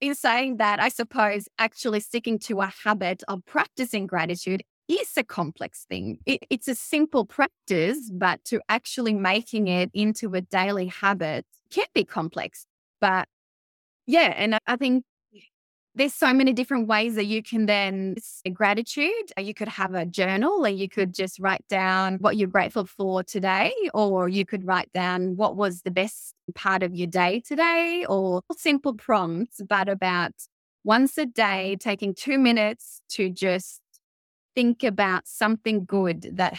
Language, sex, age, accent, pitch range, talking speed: English, female, 20-39, Australian, 185-235 Hz, 160 wpm